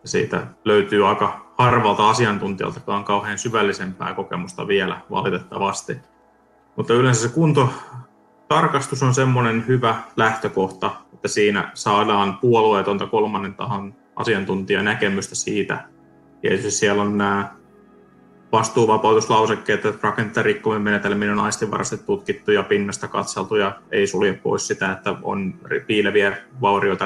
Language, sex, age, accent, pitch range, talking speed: Finnish, male, 20-39, native, 100-115 Hz, 110 wpm